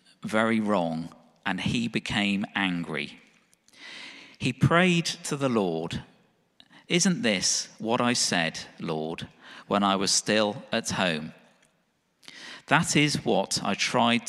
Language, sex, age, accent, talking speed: English, male, 50-69, British, 120 wpm